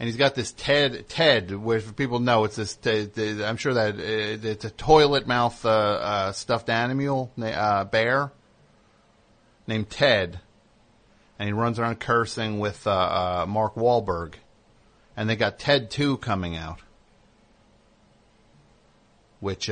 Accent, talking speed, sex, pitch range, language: American, 135 wpm, male, 105-140 Hz, English